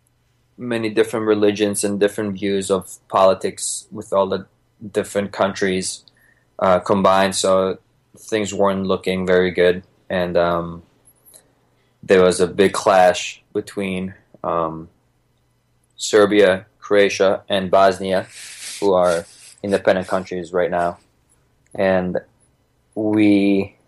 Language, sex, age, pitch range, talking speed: English, male, 20-39, 90-100 Hz, 105 wpm